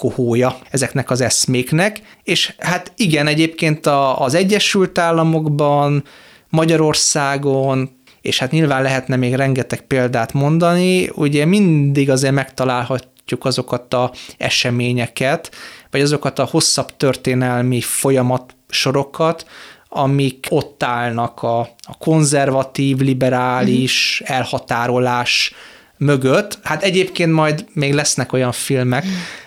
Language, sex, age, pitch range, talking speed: Hungarian, male, 30-49, 125-155 Hz, 100 wpm